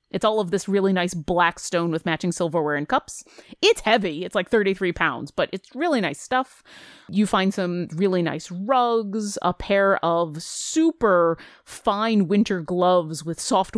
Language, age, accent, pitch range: English, 30-49, American, 175-230 Hz